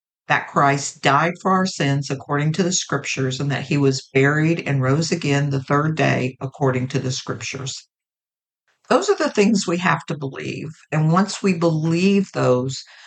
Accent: American